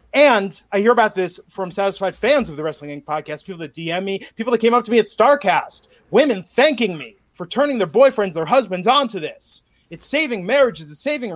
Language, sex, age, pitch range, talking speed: English, male, 30-49, 195-270 Hz, 215 wpm